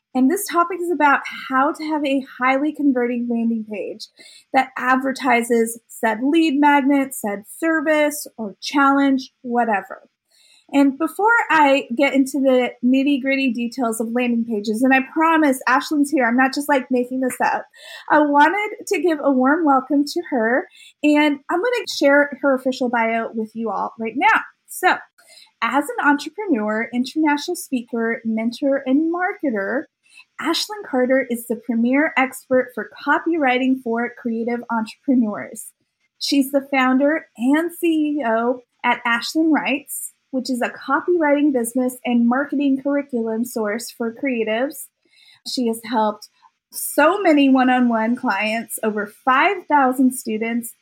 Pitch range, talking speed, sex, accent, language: 235-295 Hz, 140 wpm, female, American, English